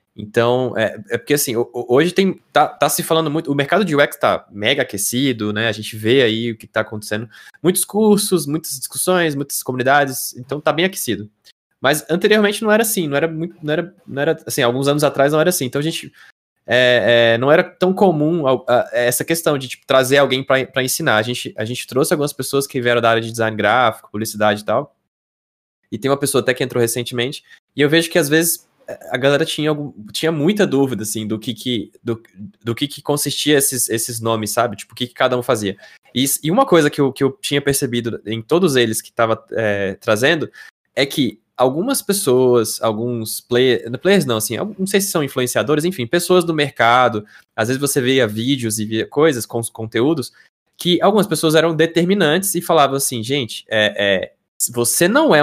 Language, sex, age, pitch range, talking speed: Portuguese, male, 20-39, 115-160 Hz, 205 wpm